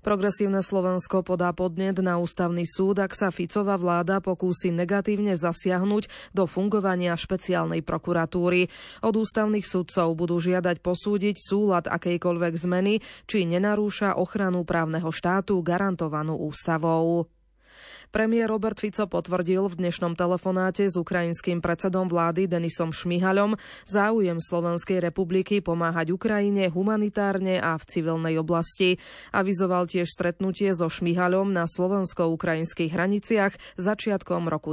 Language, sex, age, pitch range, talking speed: Slovak, female, 20-39, 170-195 Hz, 115 wpm